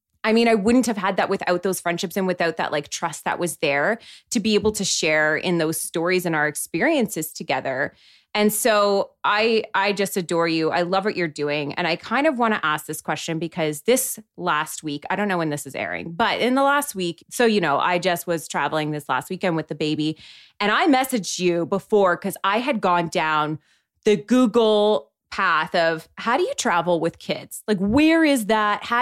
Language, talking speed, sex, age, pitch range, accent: English, 215 wpm, female, 20-39, 170-235 Hz, American